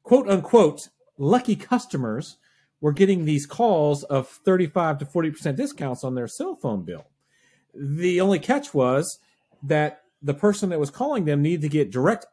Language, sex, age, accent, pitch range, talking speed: English, male, 40-59, American, 110-165 Hz, 160 wpm